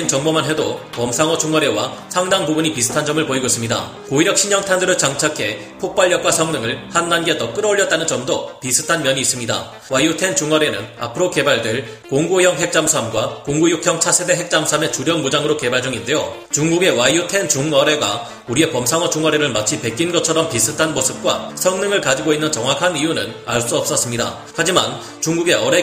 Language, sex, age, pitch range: Korean, male, 30-49, 135-175 Hz